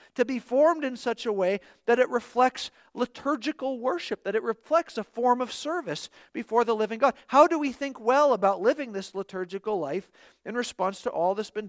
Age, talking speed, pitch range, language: 50-69, 200 wpm, 190-250 Hz, English